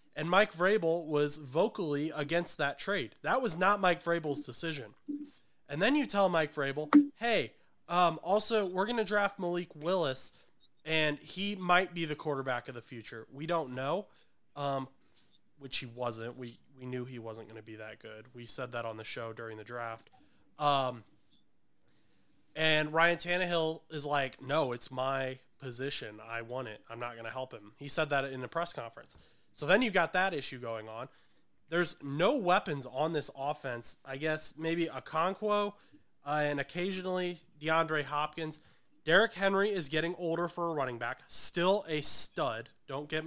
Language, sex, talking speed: English, male, 180 wpm